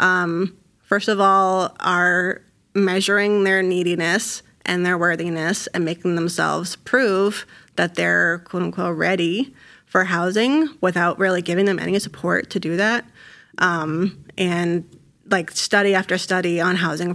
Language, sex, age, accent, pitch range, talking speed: English, female, 30-49, American, 170-195 Hz, 135 wpm